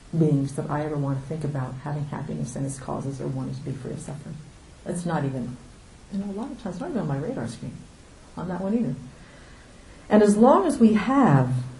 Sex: female